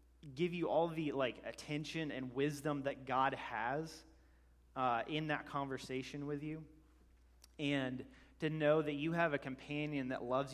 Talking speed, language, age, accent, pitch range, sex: 155 wpm, English, 30-49, American, 115-150 Hz, male